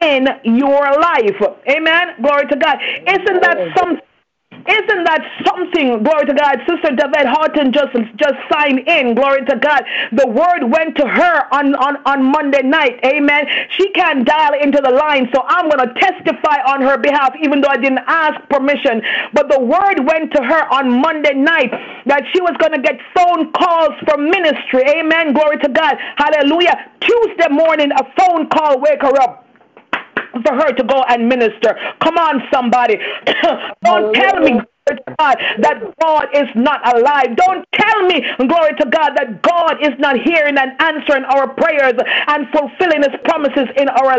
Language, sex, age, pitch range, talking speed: English, female, 40-59, 275-320 Hz, 170 wpm